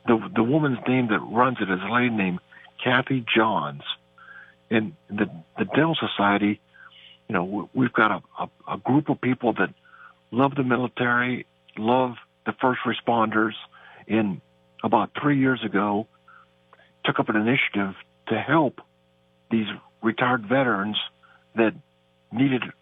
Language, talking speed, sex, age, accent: English, 135 wpm, male, 60-79, American